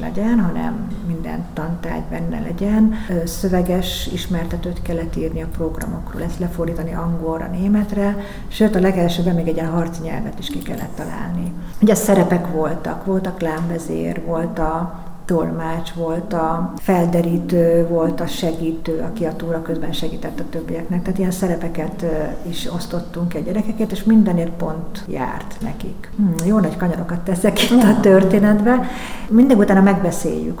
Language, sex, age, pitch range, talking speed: Hungarian, female, 50-69, 165-195 Hz, 140 wpm